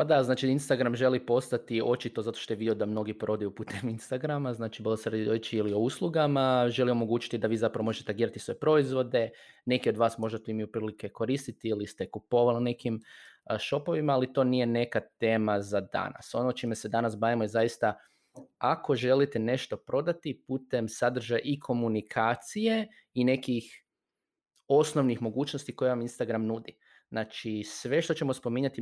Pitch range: 110-130 Hz